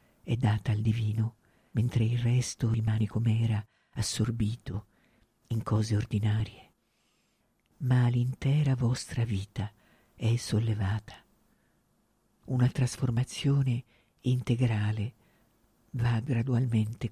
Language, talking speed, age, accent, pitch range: Italian, 90 wpm, 50-69, native, 110-135 Hz